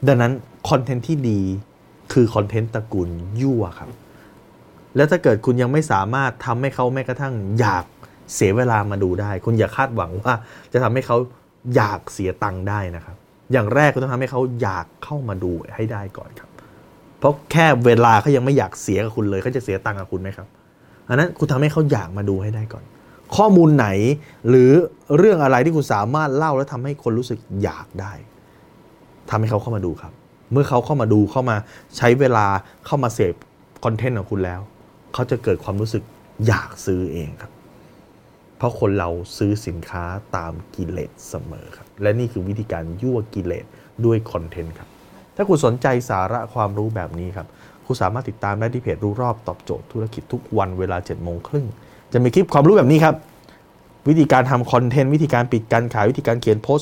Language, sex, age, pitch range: Thai, male, 20-39, 100-130 Hz